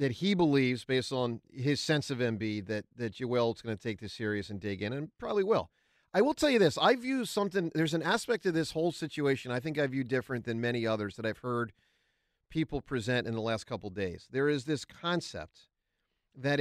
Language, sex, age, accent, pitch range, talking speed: English, male, 40-59, American, 115-190 Hz, 225 wpm